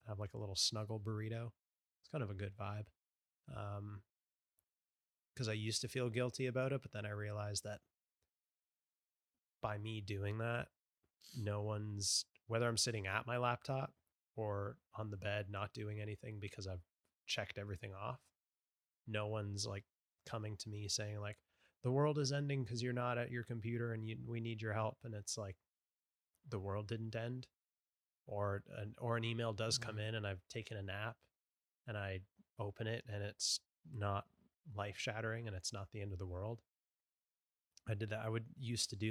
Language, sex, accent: English, male, American